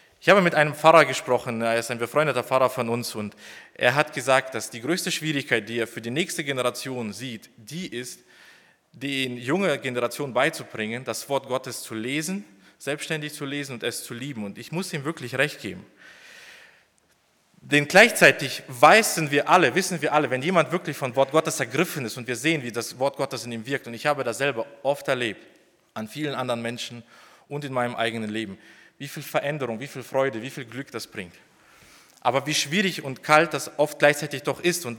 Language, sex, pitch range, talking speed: German, male, 125-155 Hz, 200 wpm